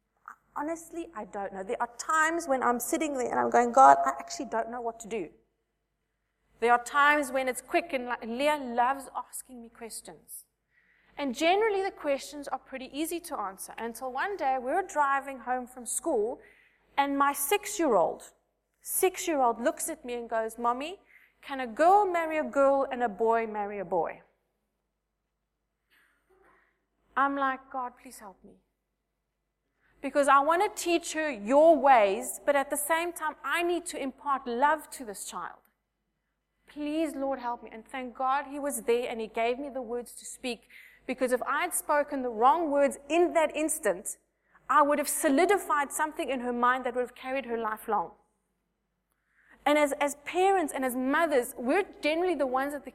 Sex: female